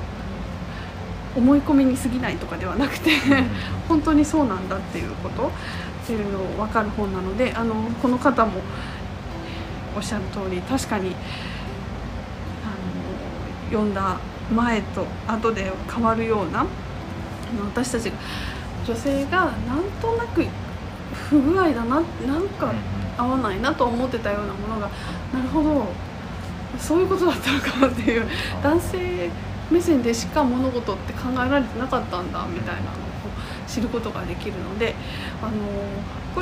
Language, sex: Japanese, female